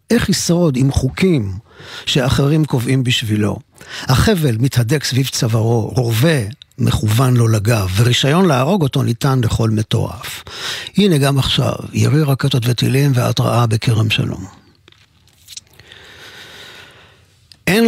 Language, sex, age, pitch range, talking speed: Hebrew, male, 50-69, 115-150 Hz, 105 wpm